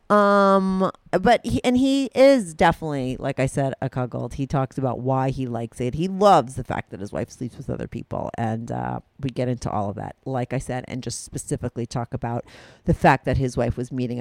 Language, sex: English, female